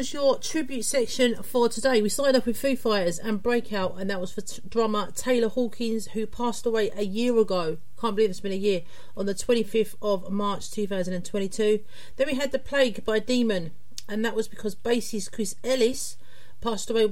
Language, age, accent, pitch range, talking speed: English, 40-59, British, 195-245 Hz, 195 wpm